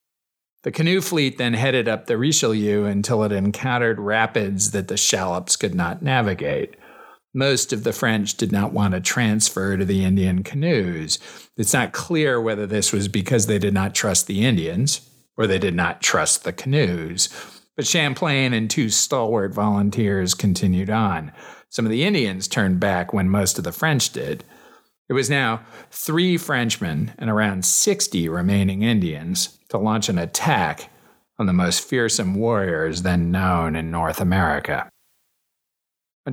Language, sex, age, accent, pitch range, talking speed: English, male, 50-69, American, 95-120 Hz, 160 wpm